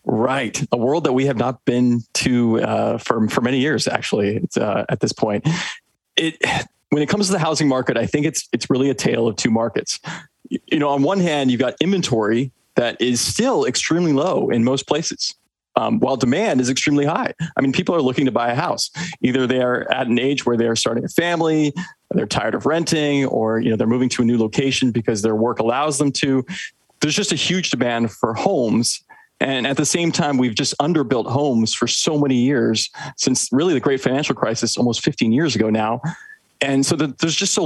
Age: 20-39